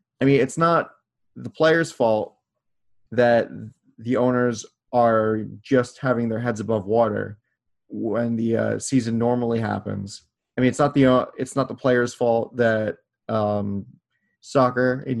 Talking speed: 150 wpm